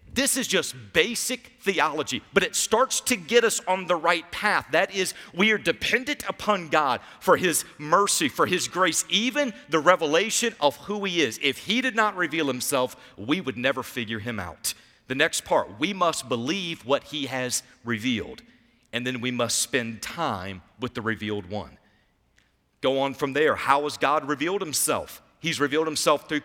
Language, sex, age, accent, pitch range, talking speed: English, male, 40-59, American, 120-175 Hz, 180 wpm